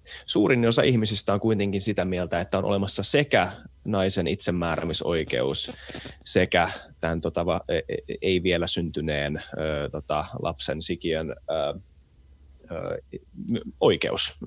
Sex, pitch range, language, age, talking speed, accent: male, 80-110 Hz, Finnish, 20-39, 85 wpm, native